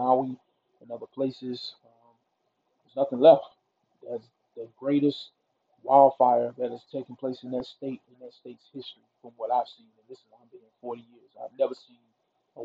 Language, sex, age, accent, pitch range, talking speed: English, male, 40-59, American, 125-145 Hz, 175 wpm